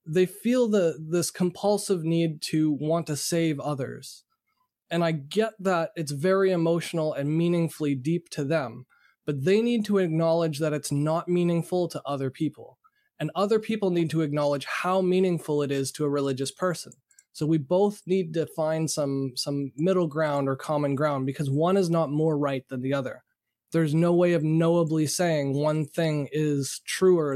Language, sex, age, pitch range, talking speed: English, male, 20-39, 145-175 Hz, 180 wpm